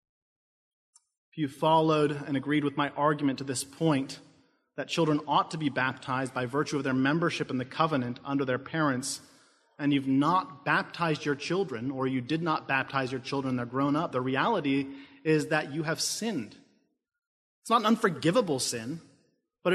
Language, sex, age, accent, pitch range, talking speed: English, male, 30-49, American, 135-170 Hz, 175 wpm